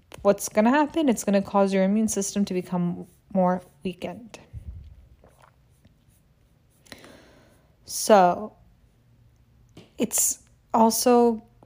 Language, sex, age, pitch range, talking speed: English, female, 20-39, 180-210 Hz, 95 wpm